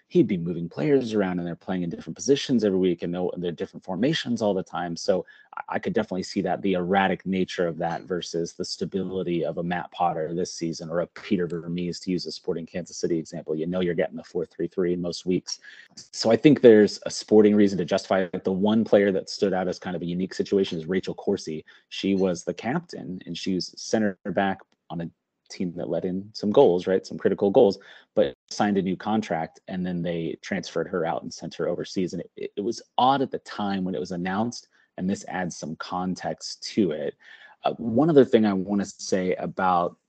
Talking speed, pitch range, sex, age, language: 225 wpm, 90-105 Hz, male, 30-49, English